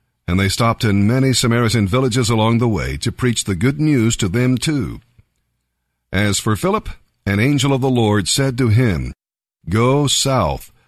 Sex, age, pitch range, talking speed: male, 50-69, 100-130 Hz, 170 wpm